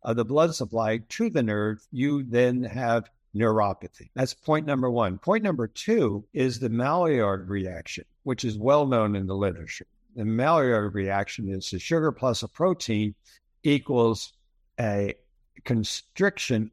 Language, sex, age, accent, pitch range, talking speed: English, male, 60-79, American, 105-135 Hz, 145 wpm